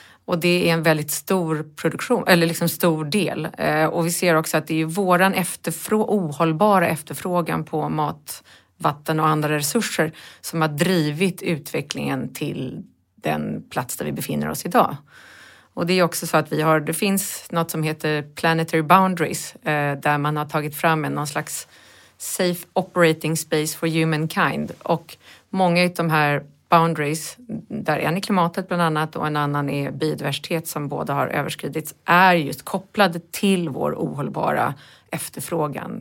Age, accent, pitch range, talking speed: 30-49, native, 150-180 Hz, 160 wpm